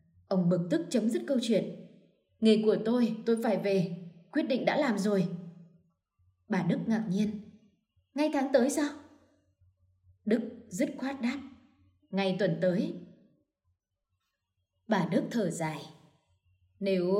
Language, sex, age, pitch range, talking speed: Vietnamese, female, 20-39, 175-225 Hz, 135 wpm